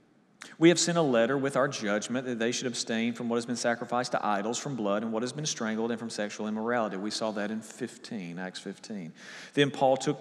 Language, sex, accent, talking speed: English, male, American, 235 wpm